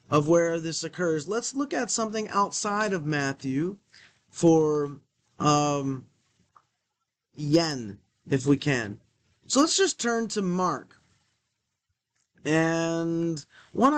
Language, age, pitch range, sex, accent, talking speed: English, 30-49, 145-200 Hz, male, American, 105 wpm